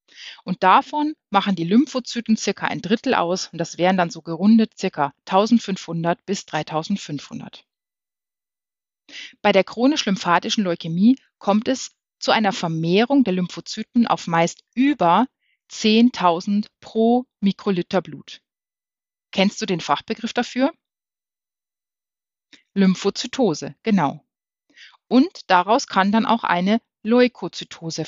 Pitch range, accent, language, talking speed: 175-230 Hz, German, German, 110 wpm